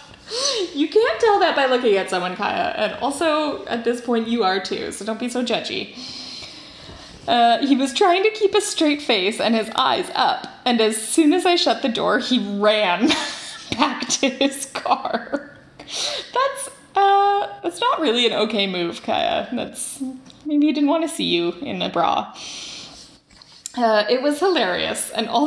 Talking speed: 170 wpm